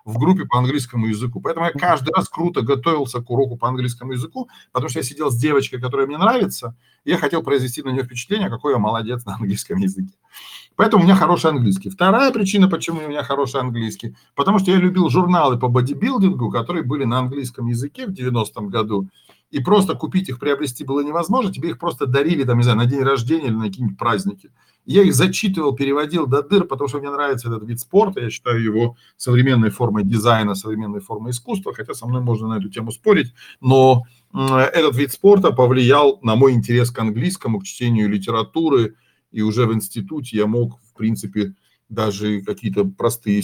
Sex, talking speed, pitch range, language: male, 190 wpm, 110-155 Hz, Russian